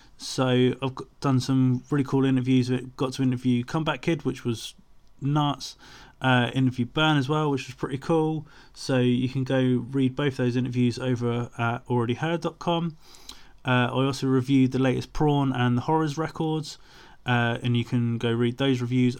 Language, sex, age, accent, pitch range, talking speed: English, male, 20-39, British, 125-140 Hz, 170 wpm